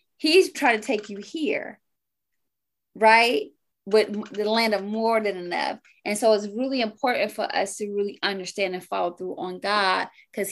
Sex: female